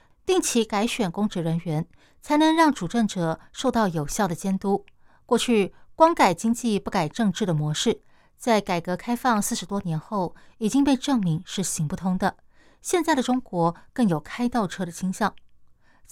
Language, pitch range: Chinese, 180-240 Hz